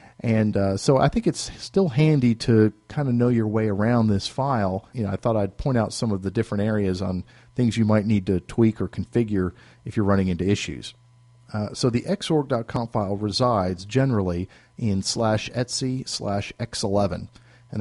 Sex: male